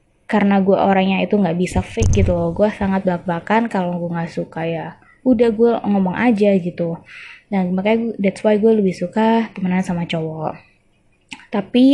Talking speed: 165 wpm